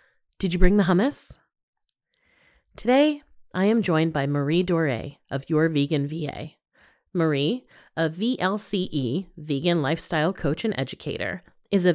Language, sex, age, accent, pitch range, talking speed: English, female, 30-49, American, 155-215 Hz, 130 wpm